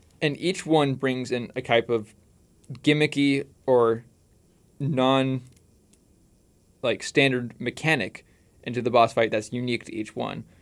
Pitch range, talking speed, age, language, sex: 110-140 Hz, 125 wpm, 20-39, English, male